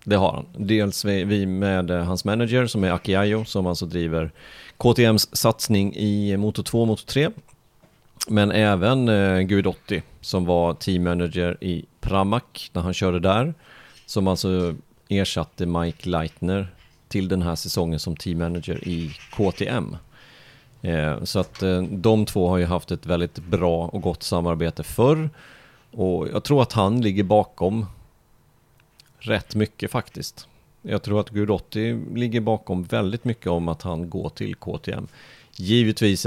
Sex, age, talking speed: male, 30-49, 140 wpm